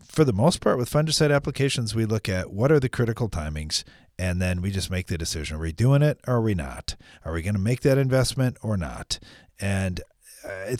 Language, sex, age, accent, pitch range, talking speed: English, male, 40-59, American, 90-125 Hz, 220 wpm